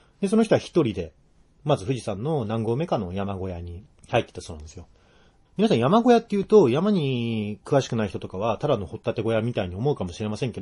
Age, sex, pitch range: 40-59, male, 95-145 Hz